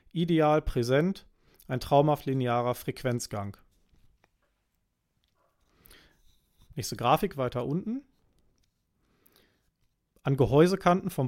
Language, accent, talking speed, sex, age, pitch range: German, German, 70 wpm, male, 40-59, 125-155 Hz